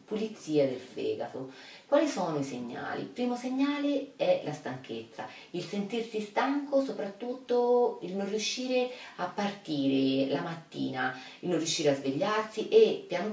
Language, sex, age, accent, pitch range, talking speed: Italian, female, 30-49, native, 150-225 Hz, 140 wpm